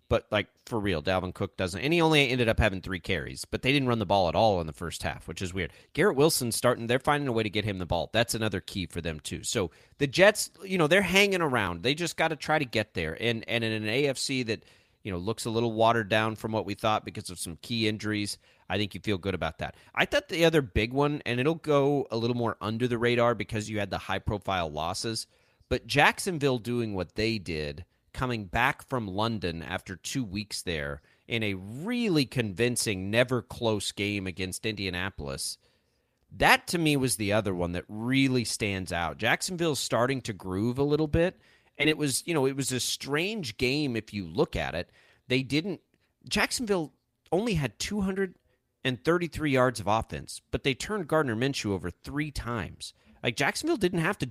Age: 30-49